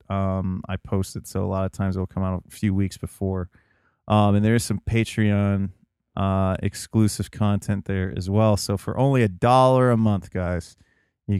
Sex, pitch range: male, 100-115 Hz